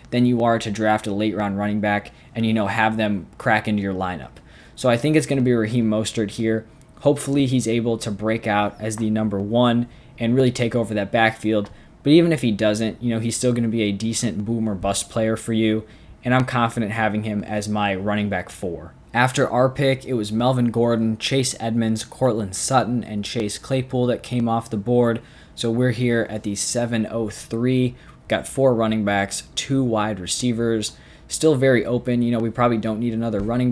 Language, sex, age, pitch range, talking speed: English, male, 20-39, 105-125 Hz, 210 wpm